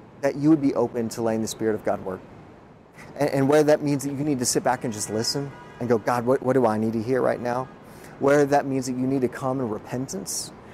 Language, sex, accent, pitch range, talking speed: English, male, American, 110-135 Hz, 270 wpm